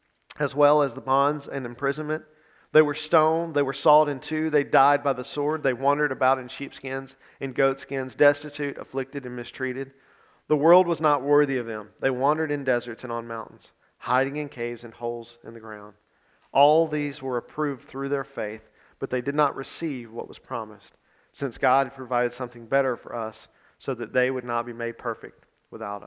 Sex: male